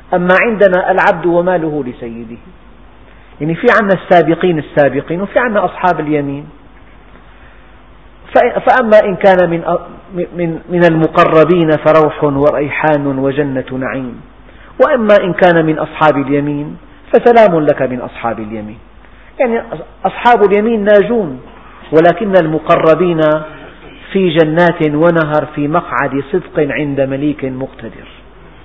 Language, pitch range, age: Arabic, 140-190 Hz, 50-69